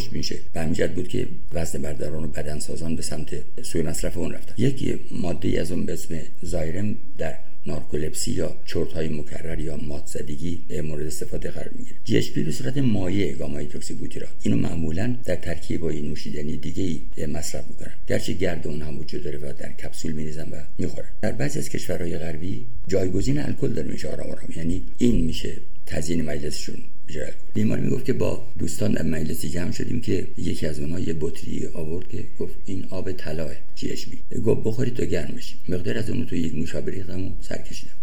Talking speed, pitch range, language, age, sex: 190 wpm, 75-95 Hz, Persian, 60-79, male